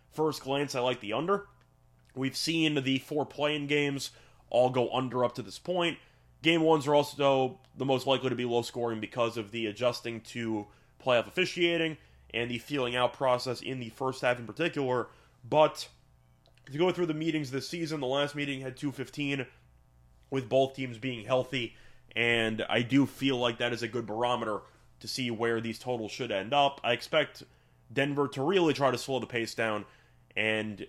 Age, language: 30-49, English